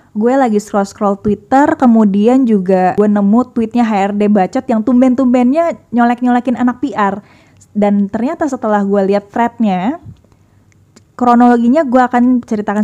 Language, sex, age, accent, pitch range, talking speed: Indonesian, female, 20-39, native, 205-255 Hz, 120 wpm